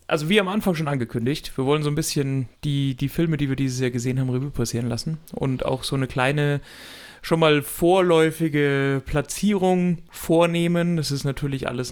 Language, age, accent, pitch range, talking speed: German, 30-49, German, 125-160 Hz, 185 wpm